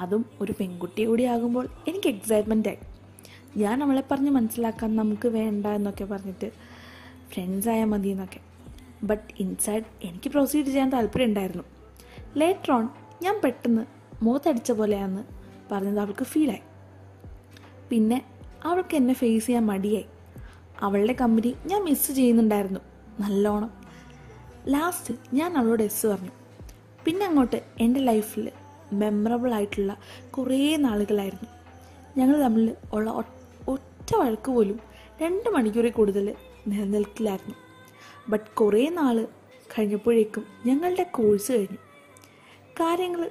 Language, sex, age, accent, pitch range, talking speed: Malayalam, female, 20-39, native, 205-260 Hz, 105 wpm